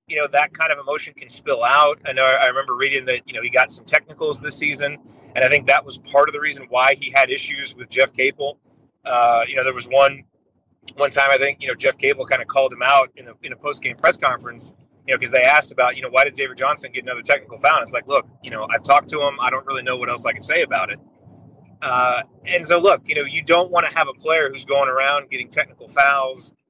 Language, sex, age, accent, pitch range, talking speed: English, male, 30-49, American, 135-180 Hz, 270 wpm